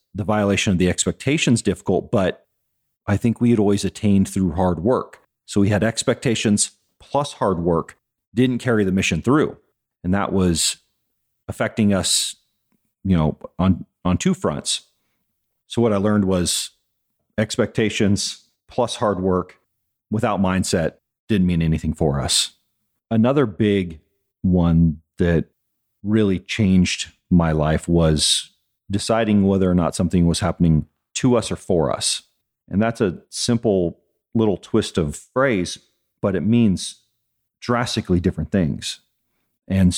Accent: American